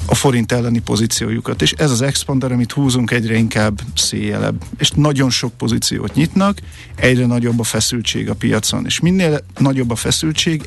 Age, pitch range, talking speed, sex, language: 50-69, 110-130 Hz, 165 wpm, male, Hungarian